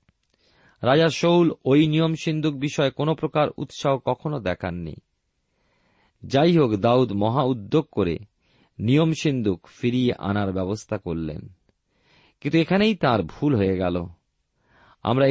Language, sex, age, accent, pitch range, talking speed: Bengali, male, 40-59, native, 100-140 Hz, 120 wpm